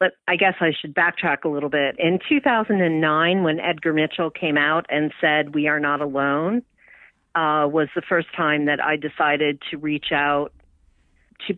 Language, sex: English, female